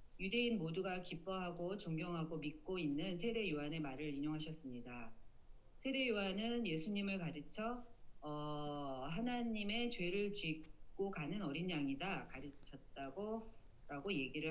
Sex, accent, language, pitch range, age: female, native, Korean, 155-220 Hz, 40-59